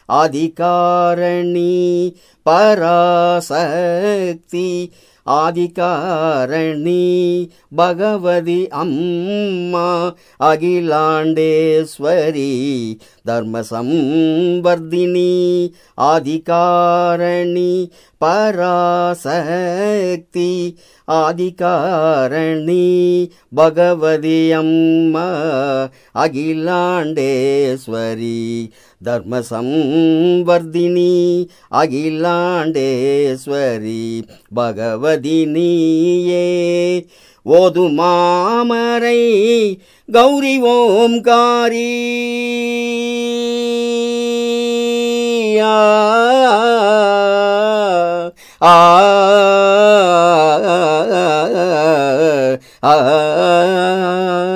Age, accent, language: 50-69, native, Tamil